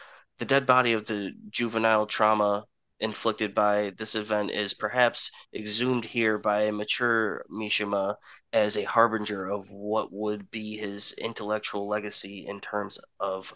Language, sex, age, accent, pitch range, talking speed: English, male, 20-39, American, 100-110 Hz, 140 wpm